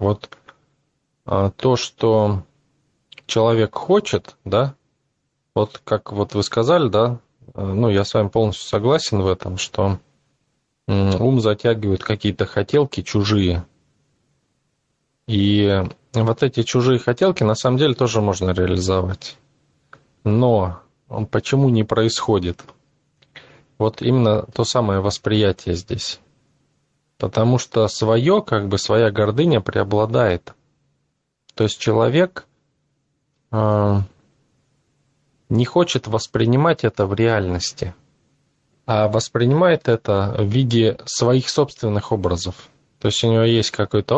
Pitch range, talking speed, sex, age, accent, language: 105-135 Hz, 105 wpm, male, 20-39, native, Russian